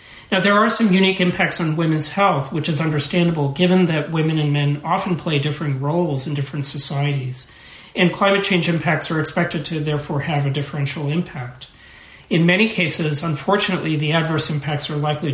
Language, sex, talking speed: English, male, 175 wpm